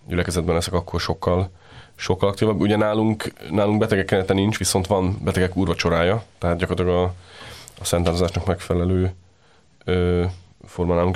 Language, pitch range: Hungarian, 90-95 Hz